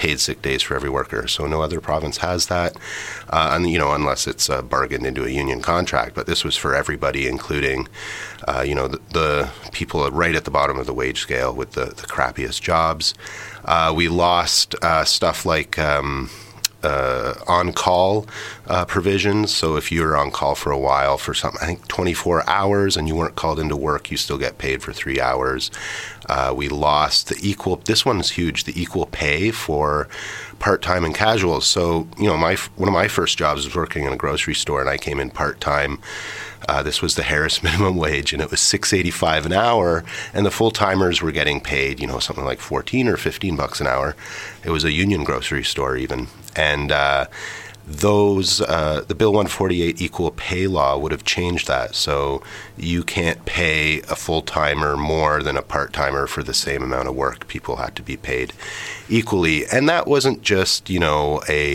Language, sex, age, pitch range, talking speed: English, male, 30-49, 70-95 Hz, 200 wpm